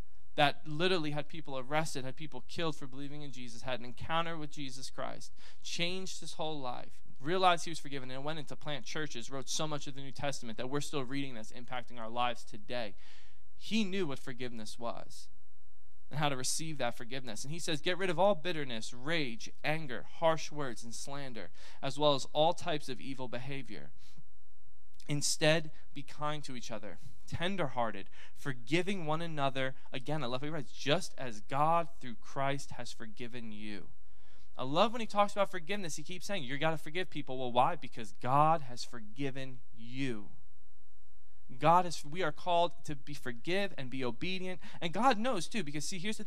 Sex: male